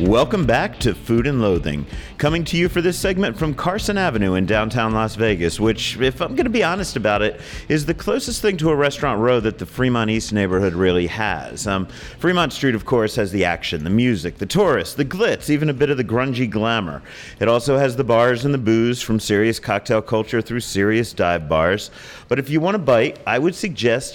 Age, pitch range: 40-59, 110-145 Hz